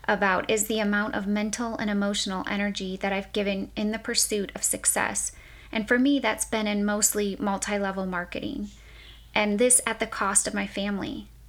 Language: English